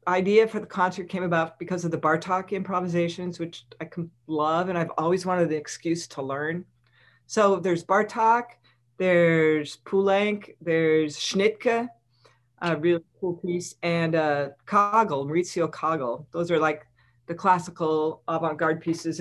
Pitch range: 150-190 Hz